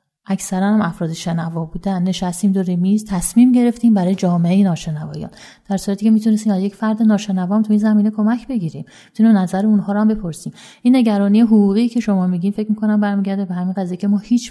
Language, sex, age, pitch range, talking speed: Persian, female, 30-49, 160-205 Hz, 185 wpm